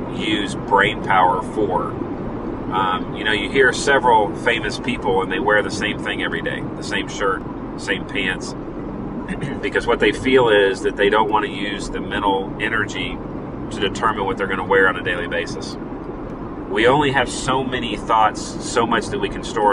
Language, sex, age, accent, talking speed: English, male, 40-59, American, 190 wpm